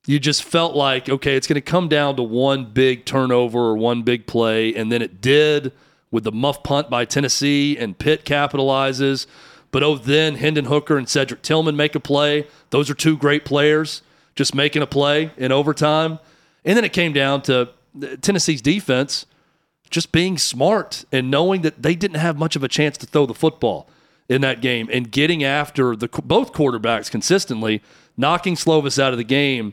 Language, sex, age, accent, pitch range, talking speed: English, male, 40-59, American, 130-155 Hz, 190 wpm